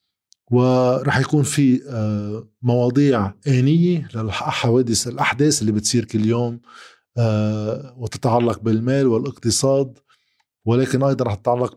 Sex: male